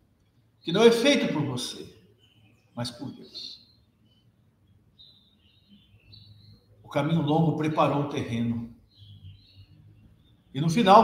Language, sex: Portuguese, male